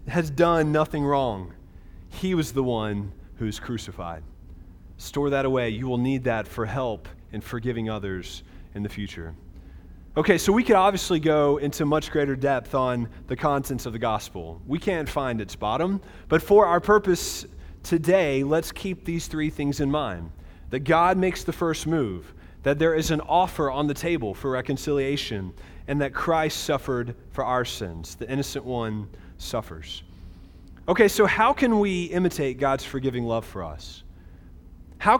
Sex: male